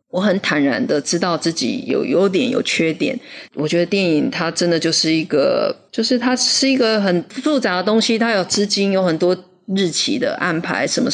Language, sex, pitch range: Chinese, female, 165-225 Hz